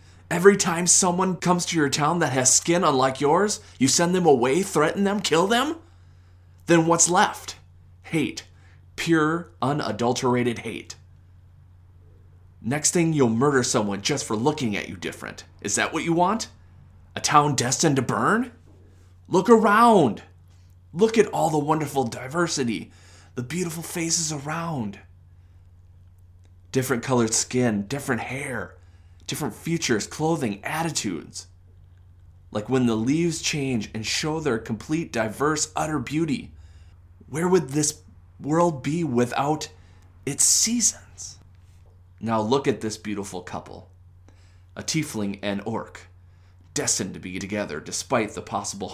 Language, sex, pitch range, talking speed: English, male, 90-150 Hz, 130 wpm